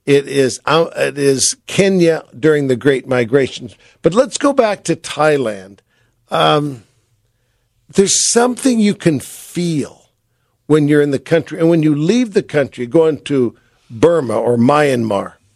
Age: 50-69